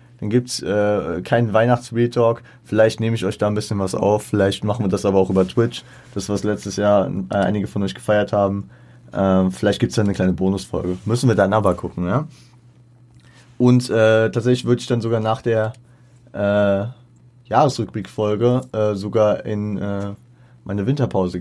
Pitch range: 100-125 Hz